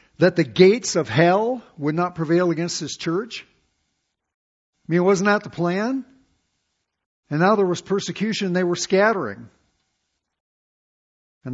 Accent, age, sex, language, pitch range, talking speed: American, 50-69, male, English, 115-185 Hz, 140 wpm